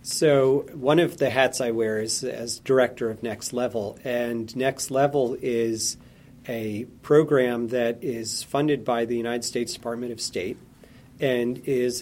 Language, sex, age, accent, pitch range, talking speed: English, male, 40-59, American, 115-130 Hz, 155 wpm